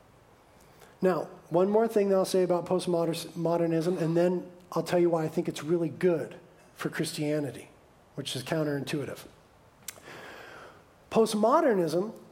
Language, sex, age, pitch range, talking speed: English, male, 40-59, 175-215 Hz, 125 wpm